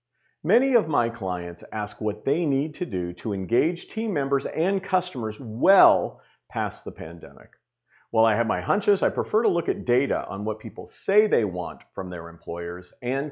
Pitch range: 105-170 Hz